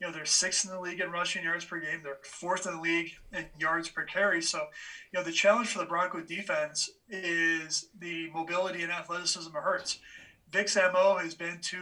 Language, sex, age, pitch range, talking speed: English, male, 30-49, 165-200 Hz, 215 wpm